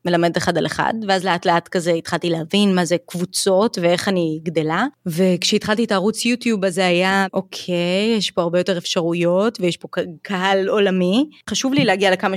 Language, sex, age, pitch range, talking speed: Hebrew, female, 20-39, 170-205 Hz, 180 wpm